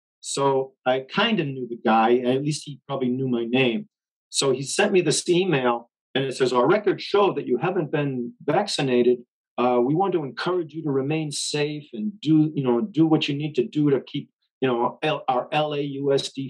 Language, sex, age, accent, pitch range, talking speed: English, male, 50-69, American, 130-165 Hz, 205 wpm